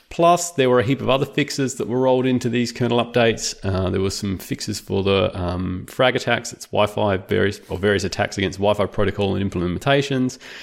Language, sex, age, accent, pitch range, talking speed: English, male, 30-49, Australian, 100-135 Hz, 200 wpm